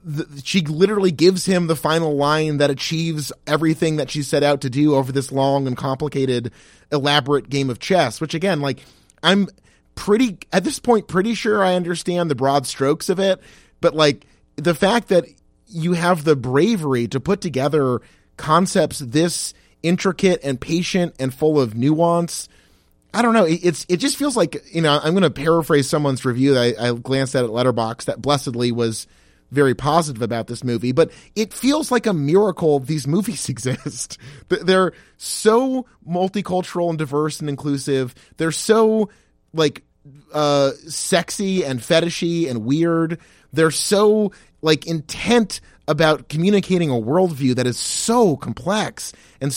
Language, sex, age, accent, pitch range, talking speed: English, male, 30-49, American, 140-185 Hz, 160 wpm